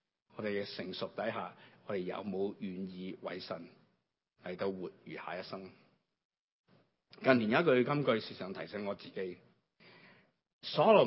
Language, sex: Chinese, male